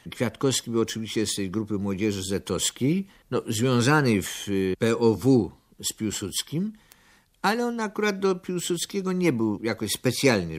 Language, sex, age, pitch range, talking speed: Polish, male, 50-69, 95-125 Hz, 125 wpm